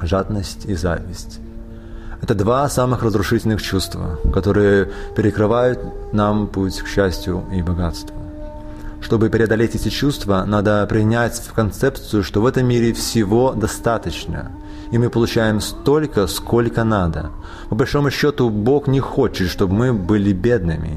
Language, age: Russian, 20-39